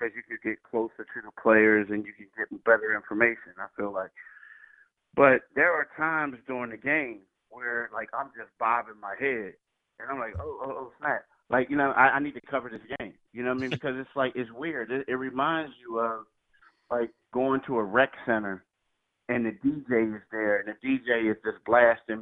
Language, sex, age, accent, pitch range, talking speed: English, male, 30-49, American, 115-135 Hz, 215 wpm